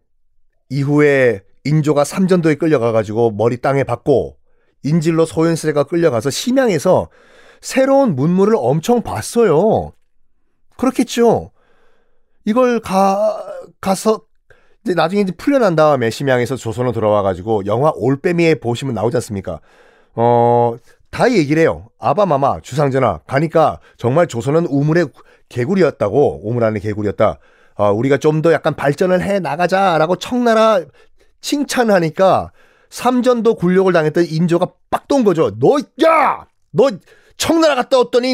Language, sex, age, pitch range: Korean, male, 40-59, 135-225 Hz